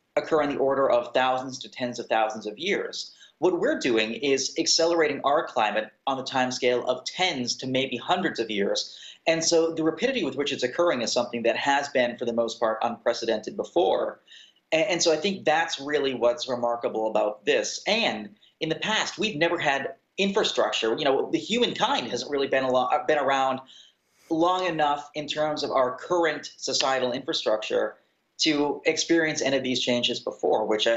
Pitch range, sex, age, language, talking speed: 125-165 Hz, male, 30-49, English, 175 wpm